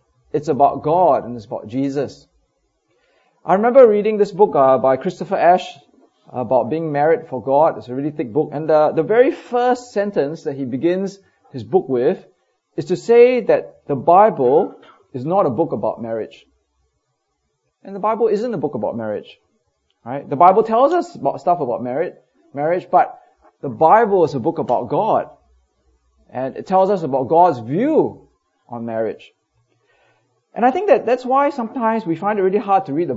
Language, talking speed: English, 175 wpm